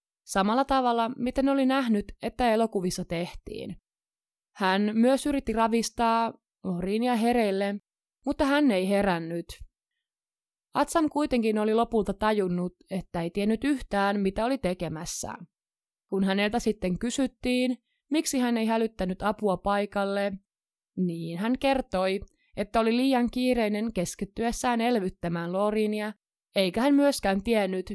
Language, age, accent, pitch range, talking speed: Finnish, 20-39, native, 190-240 Hz, 115 wpm